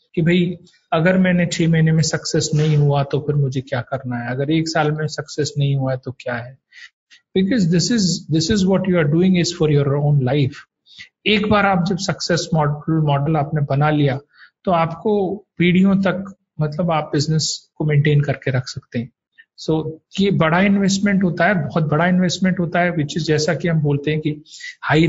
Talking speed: 200 wpm